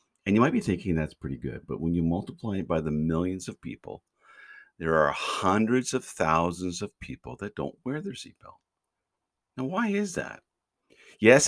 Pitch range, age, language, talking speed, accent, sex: 80-125 Hz, 50-69, English, 185 wpm, American, male